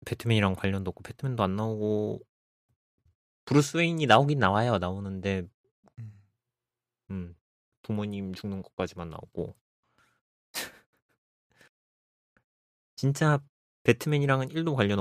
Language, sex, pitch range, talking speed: English, male, 95-125 Hz, 85 wpm